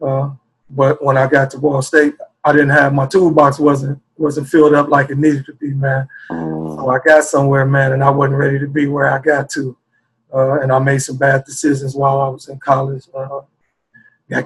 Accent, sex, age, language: American, male, 30-49, English